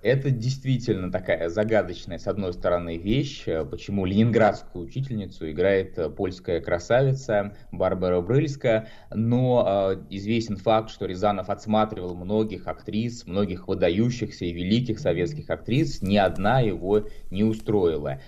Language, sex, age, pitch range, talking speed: Russian, male, 20-39, 100-125 Hz, 120 wpm